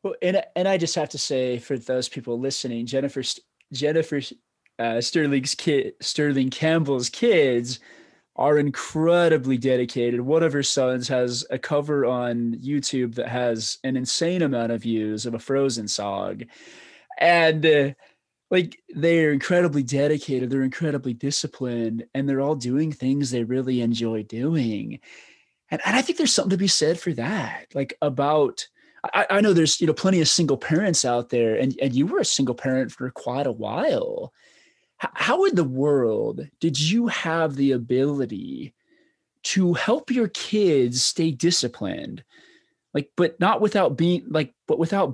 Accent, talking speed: American, 160 wpm